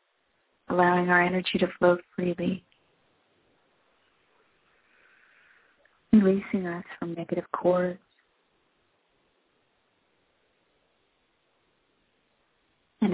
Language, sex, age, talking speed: English, female, 30-49, 55 wpm